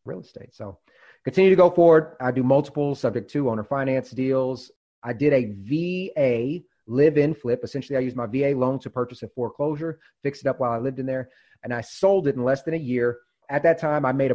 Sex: male